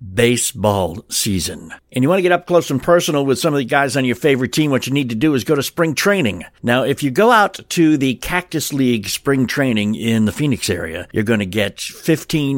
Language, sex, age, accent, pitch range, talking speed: English, male, 60-79, American, 120-155 Hz, 240 wpm